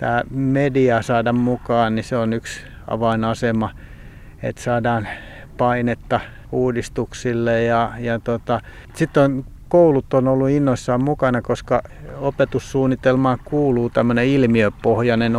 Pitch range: 115-130 Hz